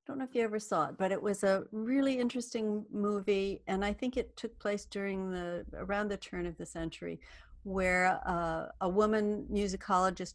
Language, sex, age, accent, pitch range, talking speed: English, female, 50-69, American, 165-205 Hz, 190 wpm